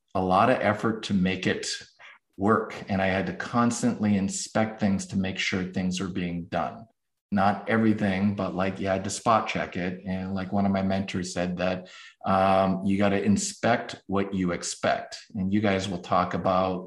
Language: English